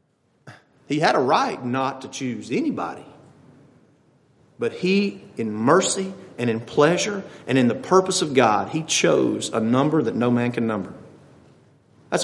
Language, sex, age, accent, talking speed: English, male, 40-59, American, 150 wpm